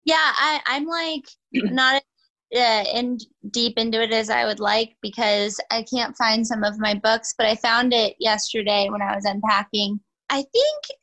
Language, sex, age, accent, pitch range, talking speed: English, female, 10-29, American, 225-280 Hz, 170 wpm